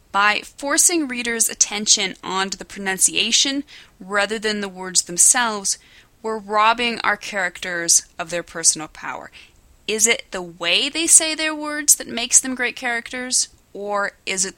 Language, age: English, 30-49